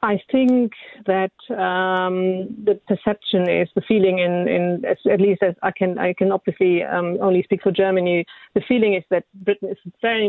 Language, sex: English, female